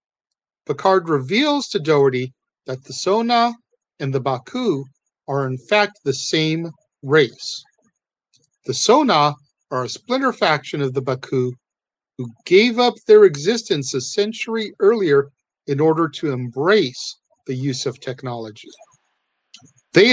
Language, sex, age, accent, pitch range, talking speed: English, male, 50-69, American, 135-210 Hz, 125 wpm